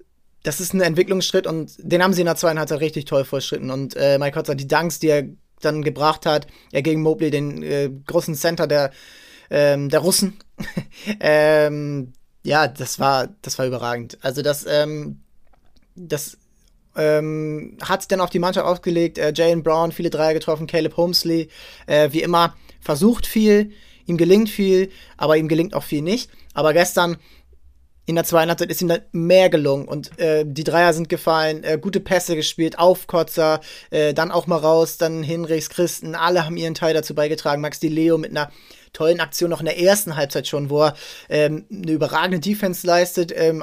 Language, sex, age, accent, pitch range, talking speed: German, male, 20-39, German, 155-180 Hz, 185 wpm